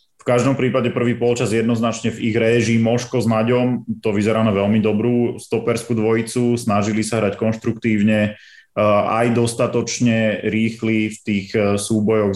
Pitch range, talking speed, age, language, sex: 105-120 Hz, 140 wpm, 30-49, Slovak, male